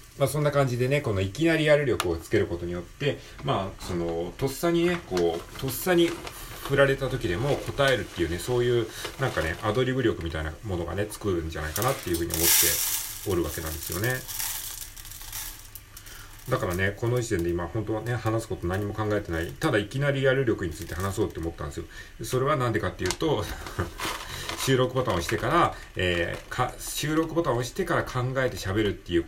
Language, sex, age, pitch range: Japanese, male, 40-59, 85-130 Hz